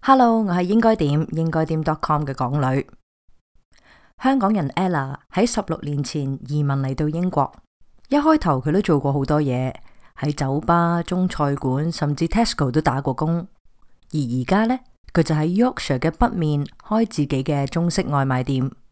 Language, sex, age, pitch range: Chinese, female, 20-39, 140-190 Hz